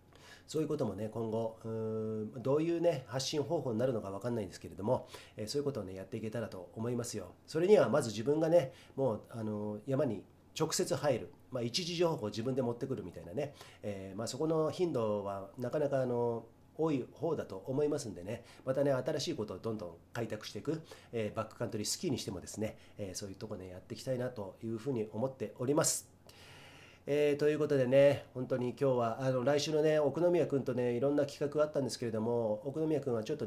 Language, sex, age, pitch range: Japanese, male, 40-59, 105-140 Hz